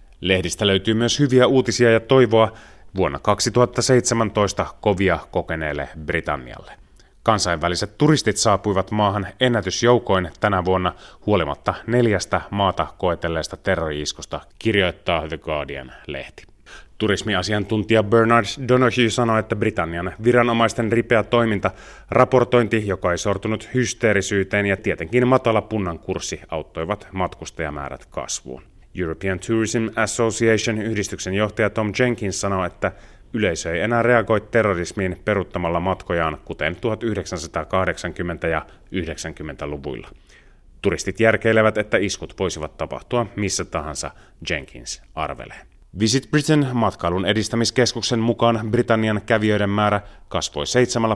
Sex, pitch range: male, 90-115 Hz